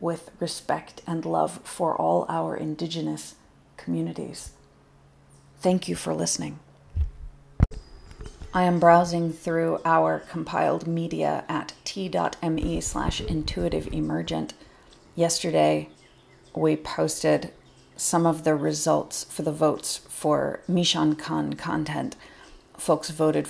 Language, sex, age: English, female, 40-59